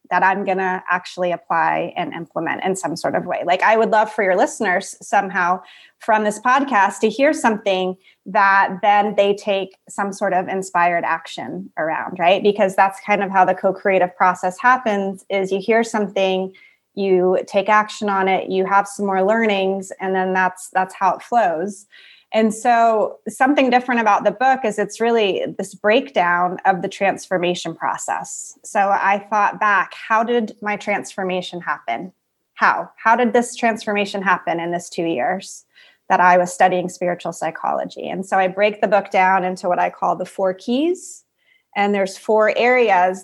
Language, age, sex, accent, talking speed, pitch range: English, 20-39, female, American, 175 wpm, 185-215 Hz